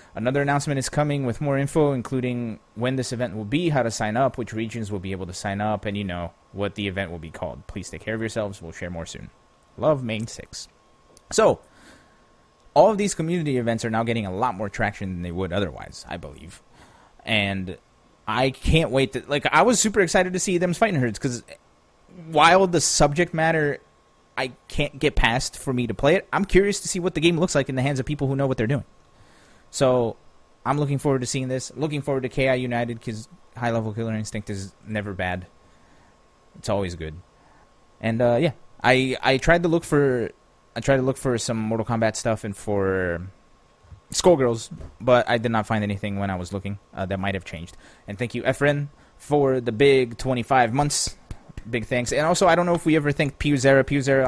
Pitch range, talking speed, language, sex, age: 100-140 Hz, 215 wpm, English, male, 30-49